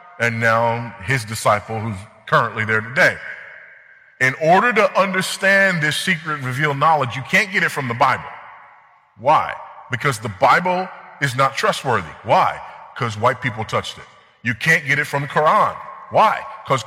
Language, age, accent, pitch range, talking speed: English, 30-49, American, 110-155 Hz, 160 wpm